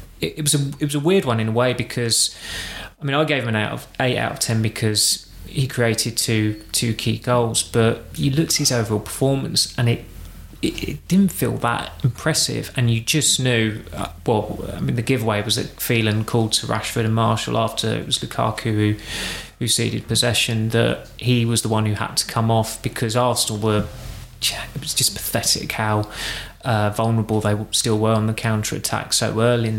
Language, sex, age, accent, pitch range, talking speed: English, male, 20-39, British, 110-120 Hz, 200 wpm